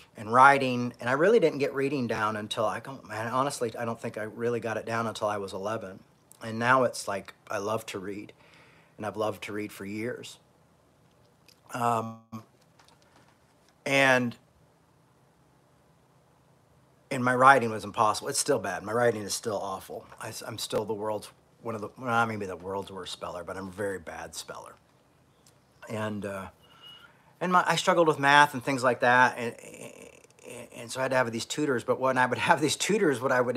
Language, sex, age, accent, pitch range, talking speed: English, male, 40-59, American, 110-135 Hz, 190 wpm